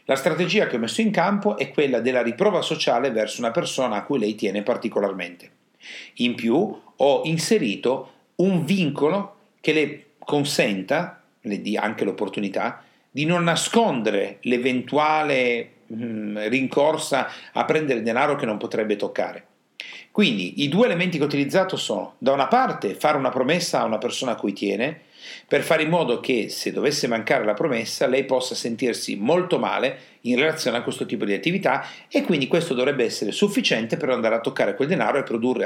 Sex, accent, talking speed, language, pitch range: male, native, 170 wpm, Italian, 125-200 Hz